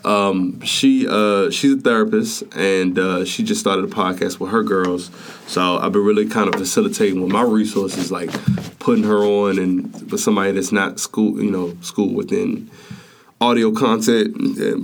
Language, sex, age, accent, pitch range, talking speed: English, male, 20-39, American, 95-145 Hz, 175 wpm